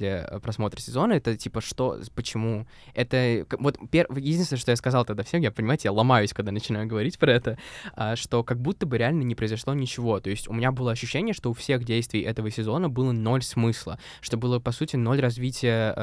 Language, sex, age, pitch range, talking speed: Russian, male, 20-39, 115-140 Hz, 195 wpm